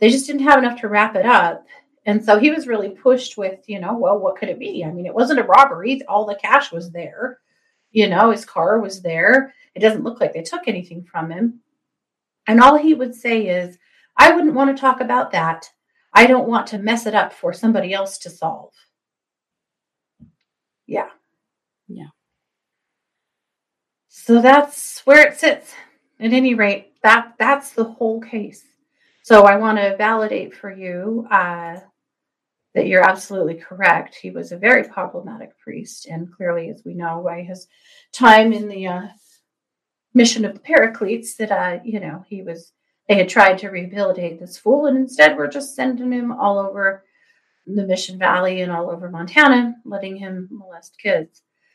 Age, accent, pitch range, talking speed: 30-49, American, 190-255 Hz, 180 wpm